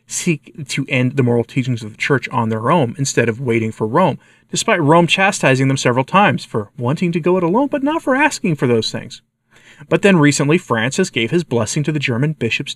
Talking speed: 220 wpm